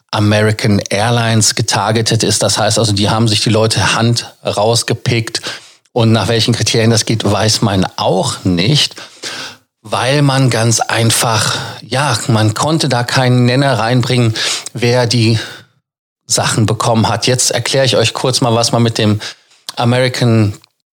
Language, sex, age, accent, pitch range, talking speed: German, male, 40-59, German, 110-125 Hz, 145 wpm